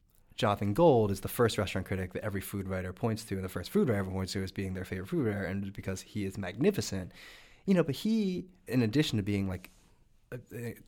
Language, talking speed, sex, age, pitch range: English, 230 wpm, male, 20-39, 95-115 Hz